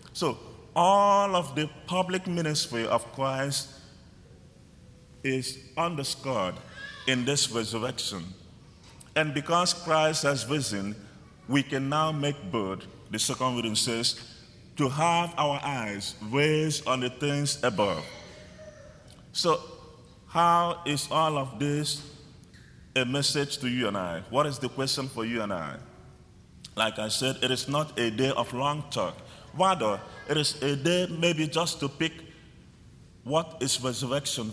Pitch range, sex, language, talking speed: 115-150 Hz, male, English, 135 wpm